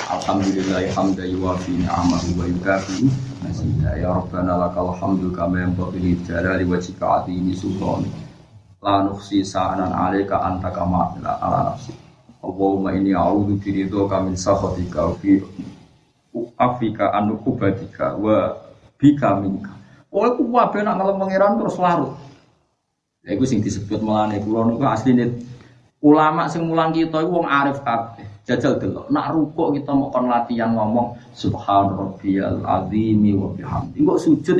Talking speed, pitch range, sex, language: 115 wpm, 95-145 Hz, male, Indonesian